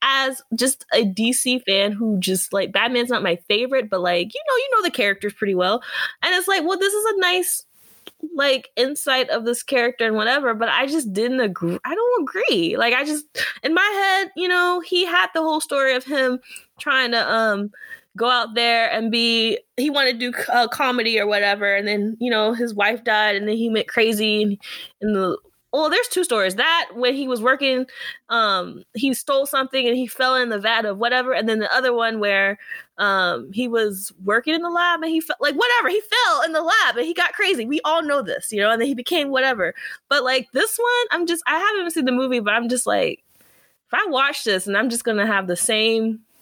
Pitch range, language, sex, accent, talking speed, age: 220-315 Hz, English, female, American, 230 wpm, 20-39